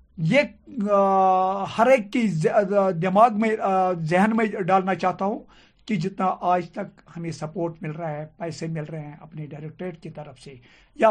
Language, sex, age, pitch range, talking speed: Urdu, male, 50-69, 170-225 Hz, 155 wpm